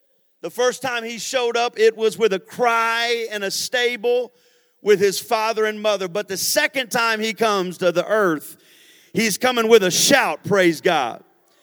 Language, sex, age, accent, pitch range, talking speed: English, male, 40-59, American, 180-235 Hz, 180 wpm